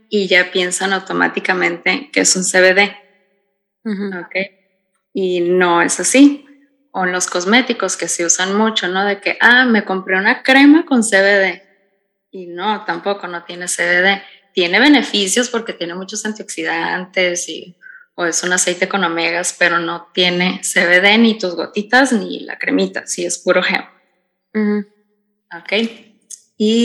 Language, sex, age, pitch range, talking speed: Spanish, female, 20-39, 180-210 Hz, 150 wpm